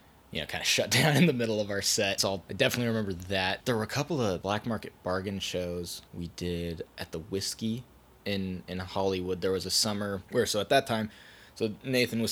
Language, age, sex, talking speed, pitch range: English, 20-39, male, 230 wpm, 90-105 Hz